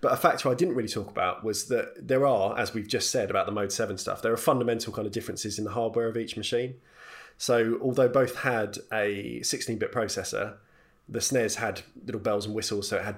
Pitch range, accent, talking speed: 100-115 Hz, British, 230 wpm